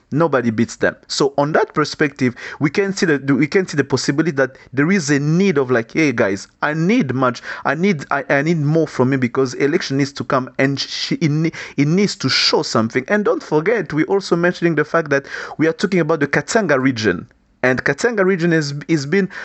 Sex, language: male, English